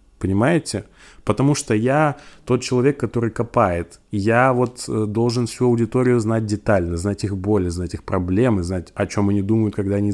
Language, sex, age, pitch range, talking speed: Russian, male, 20-39, 95-120 Hz, 165 wpm